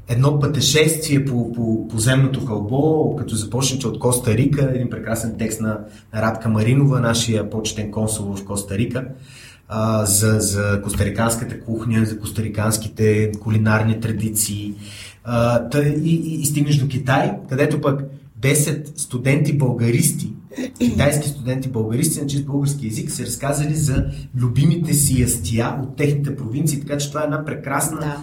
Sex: male